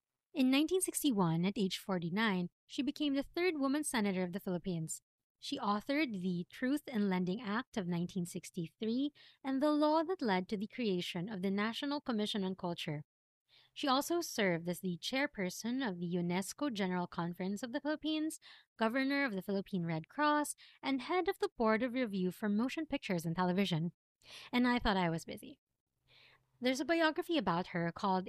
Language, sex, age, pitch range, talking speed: English, female, 20-39, 180-270 Hz, 170 wpm